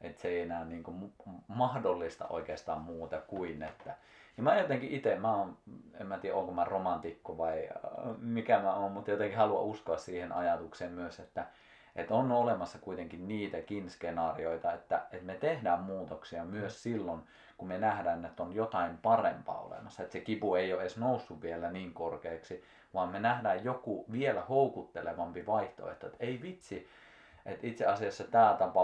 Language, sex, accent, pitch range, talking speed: Finnish, male, native, 85-110 Hz, 165 wpm